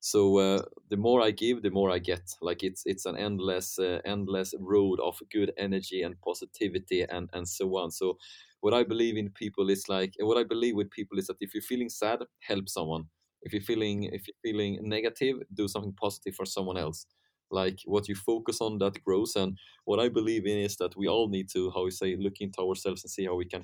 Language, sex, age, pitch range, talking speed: English, male, 30-49, 95-105 Hz, 230 wpm